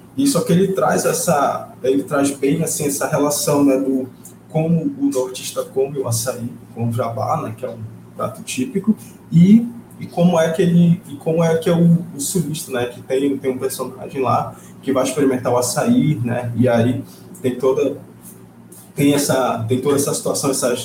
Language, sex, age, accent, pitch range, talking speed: Portuguese, male, 20-39, Brazilian, 120-145 Hz, 195 wpm